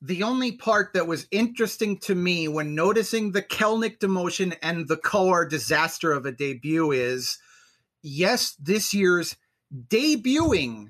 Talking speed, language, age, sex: 140 wpm, English, 30-49, male